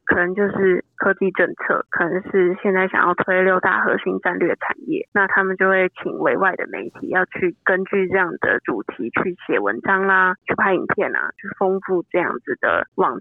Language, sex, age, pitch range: Chinese, female, 20-39, 185-255 Hz